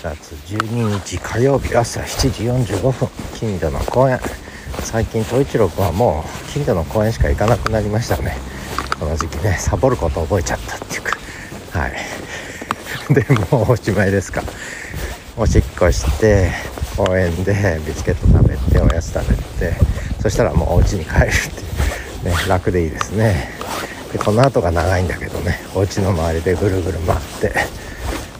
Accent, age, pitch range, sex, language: native, 60-79, 85-115 Hz, male, Japanese